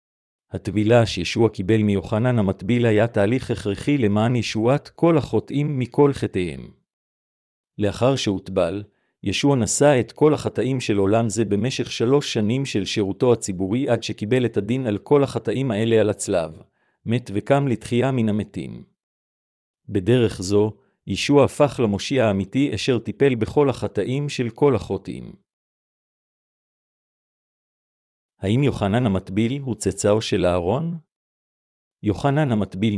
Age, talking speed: 50-69, 120 wpm